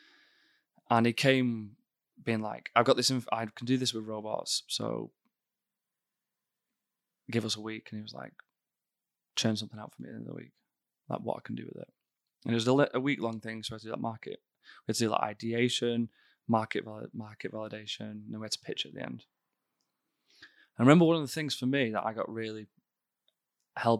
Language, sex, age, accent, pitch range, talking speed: English, male, 20-39, British, 110-125 Hz, 225 wpm